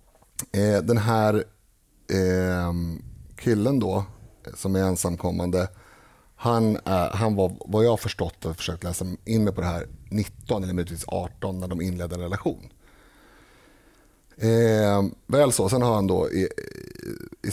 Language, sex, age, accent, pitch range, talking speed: Swedish, male, 30-49, native, 90-110 Hz, 135 wpm